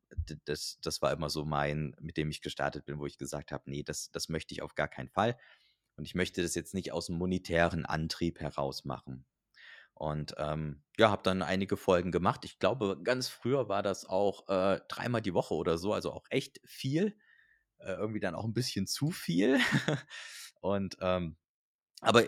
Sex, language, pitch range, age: male, German, 90-115 Hz, 30-49